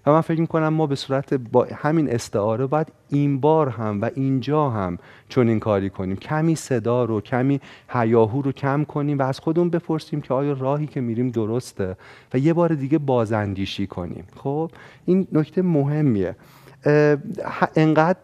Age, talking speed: 30-49, 165 wpm